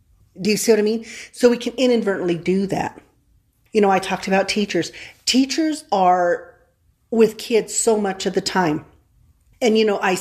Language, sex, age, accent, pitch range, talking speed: English, female, 40-59, American, 175-210 Hz, 180 wpm